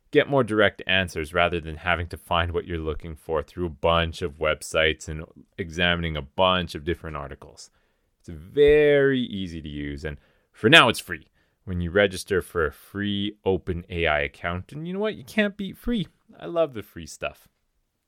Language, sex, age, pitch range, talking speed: English, male, 30-49, 85-130 Hz, 190 wpm